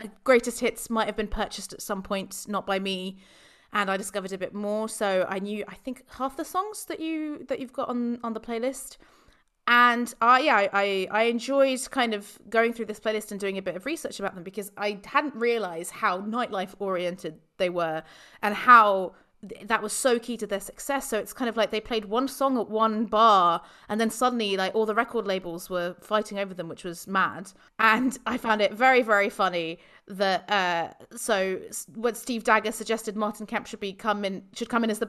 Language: English